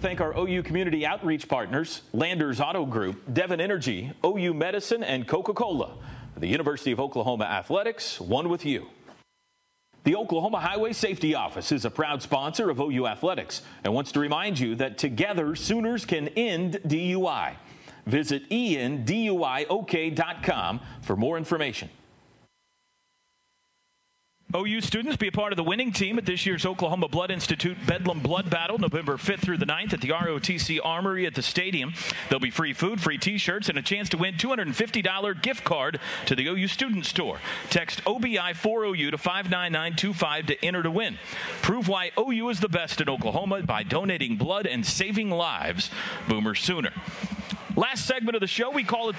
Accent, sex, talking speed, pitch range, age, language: American, male, 165 wpm, 165-215 Hz, 40-59, English